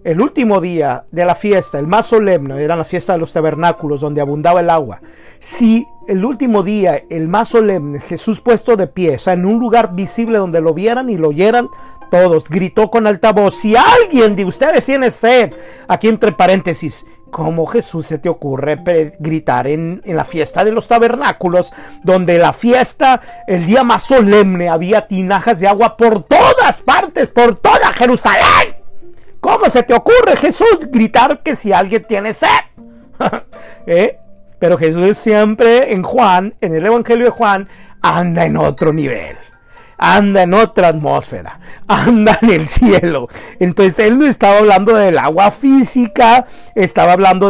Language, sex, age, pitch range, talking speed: Spanish, male, 50-69, 175-235 Hz, 165 wpm